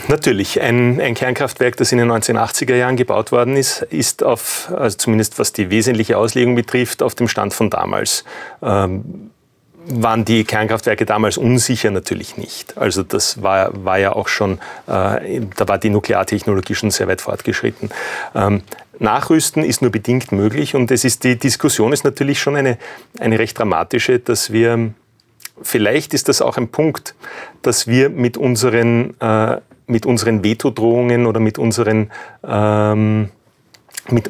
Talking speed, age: 155 wpm, 40-59